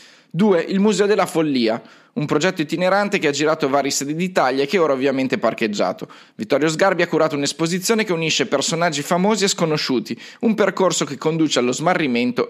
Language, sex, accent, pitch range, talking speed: Italian, male, native, 135-195 Hz, 180 wpm